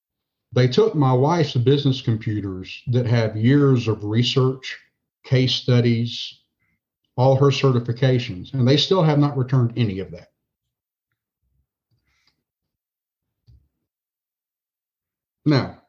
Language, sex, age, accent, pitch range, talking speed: English, male, 50-69, American, 115-140 Hz, 100 wpm